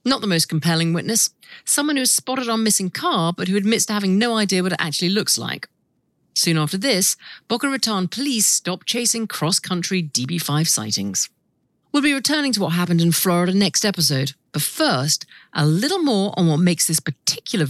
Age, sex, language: 50-69, female, English